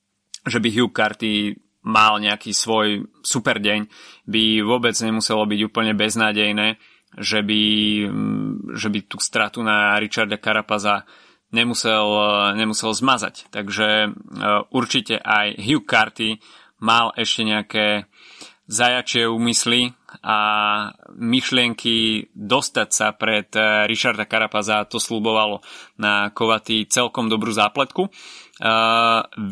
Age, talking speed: 20-39, 105 wpm